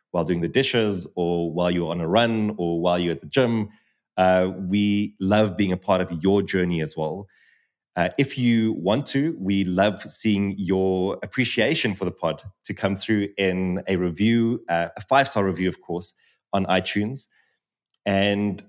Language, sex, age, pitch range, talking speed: English, male, 30-49, 90-110 Hz, 175 wpm